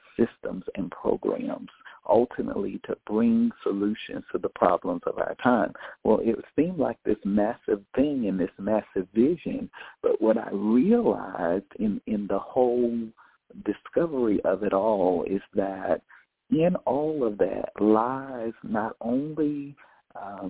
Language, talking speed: English, 135 wpm